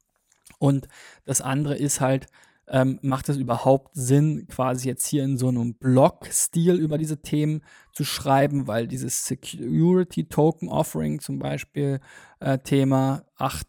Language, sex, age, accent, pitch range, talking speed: German, male, 20-39, German, 130-155 Hz, 140 wpm